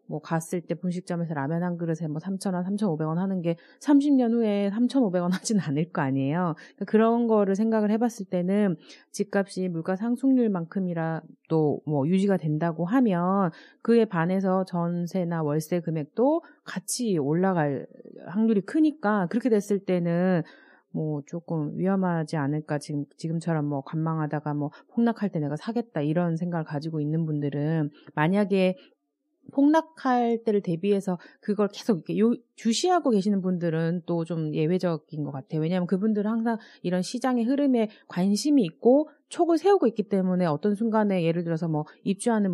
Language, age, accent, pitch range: Korean, 30-49, native, 165-225 Hz